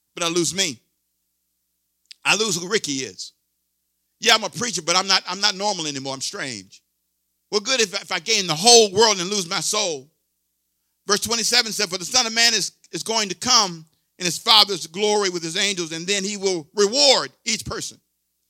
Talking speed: 205 wpm